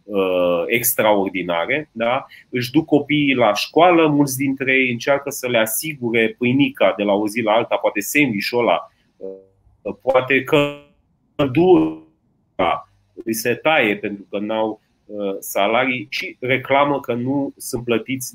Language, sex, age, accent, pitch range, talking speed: Romanian, male, 30-49, native, 100-130 Hz, 125 wpm